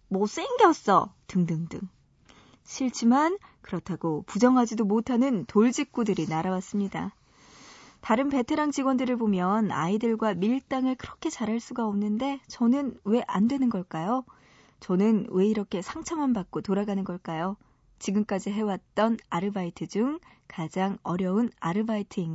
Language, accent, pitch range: Korean, native, 190-245 Hz